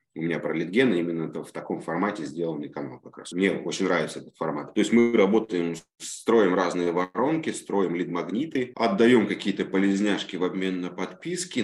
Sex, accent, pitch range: male, native, 90-110 Hz